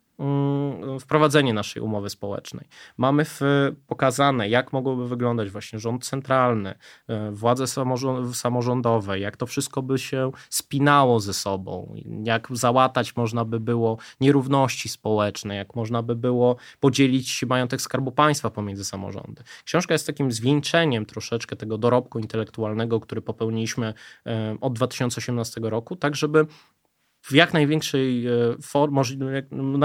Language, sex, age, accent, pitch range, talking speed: Polish, male, 20-39, native, 110-135 Hz, 115 wpm